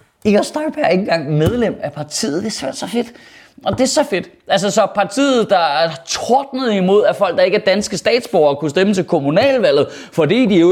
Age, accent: 30-49, native